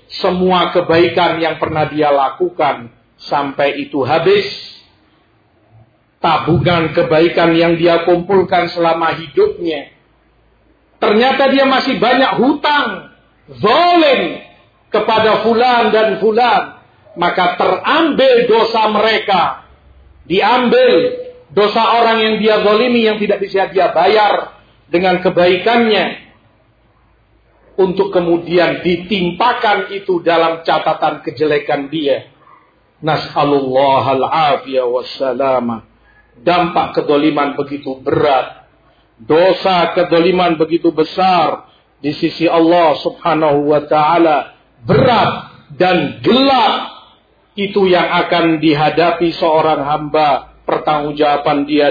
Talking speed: 90 wpm